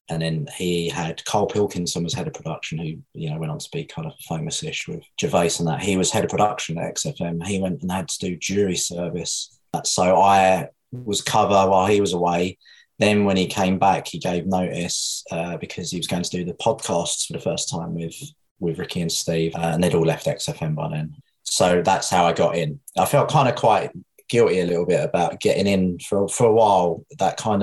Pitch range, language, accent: 85-100 Hz, English, British